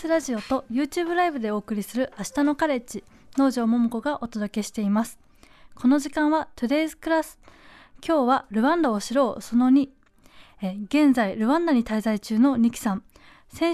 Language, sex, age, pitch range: Japanese, female, 20-39, 220-280 Hz